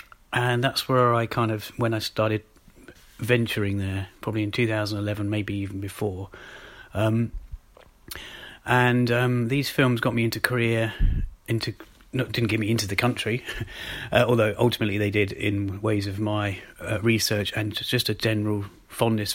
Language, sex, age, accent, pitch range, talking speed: English, male, 30-49, British, 105-120 Hz, 155 wpm